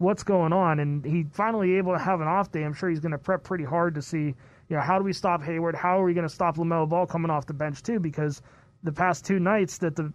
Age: 30-49